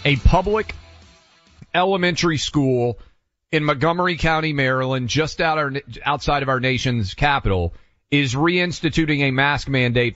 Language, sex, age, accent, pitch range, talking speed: English, male, 40-59, American, 100-135 Hz, 125 wpm